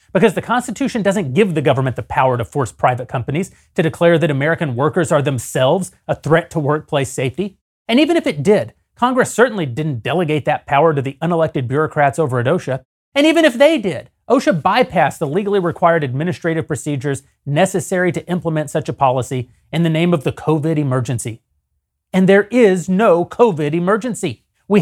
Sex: male